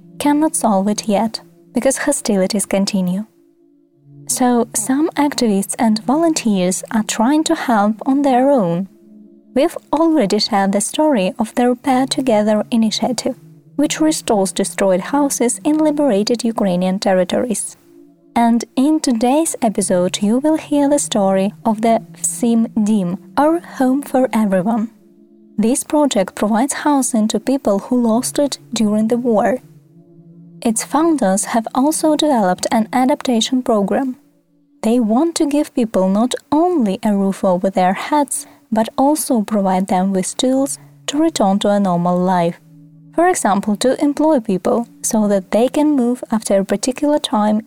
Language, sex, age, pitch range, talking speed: Ukrainian, female, 20-39, 190-275 Hz, 140 wpm